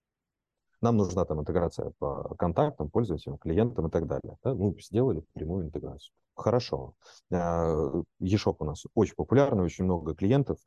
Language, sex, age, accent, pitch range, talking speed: Russian, male, 30-49, native, 80-105 Hz, 145 wpm